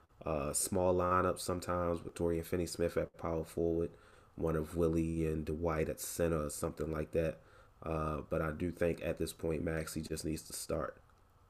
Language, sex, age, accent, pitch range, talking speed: English, male, 30-49, American, 80-90 Hz, 190 wpm